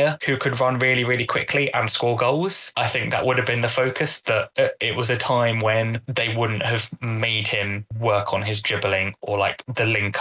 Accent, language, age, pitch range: British, English, 10-29, 105-130 Hz